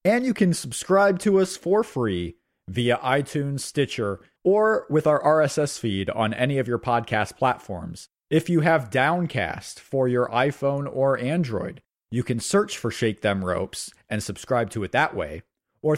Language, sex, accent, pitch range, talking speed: English, male, American, 115-160 Hz, 170 wpm